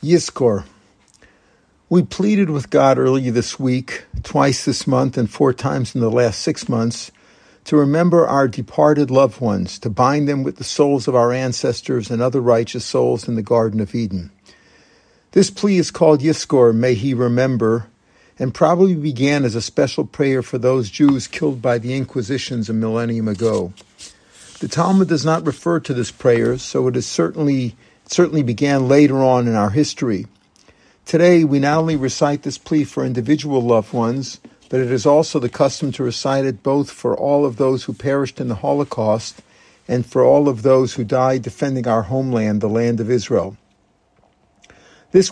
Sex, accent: male, American